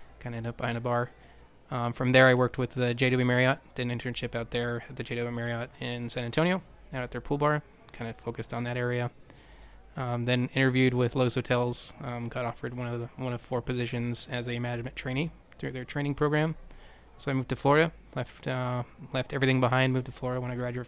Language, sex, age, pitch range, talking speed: English, male, 20-39, 120-130 Hz, 225 wpm